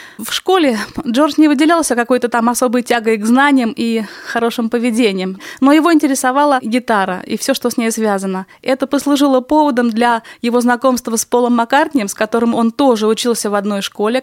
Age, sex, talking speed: 20-39, female, 175 wpm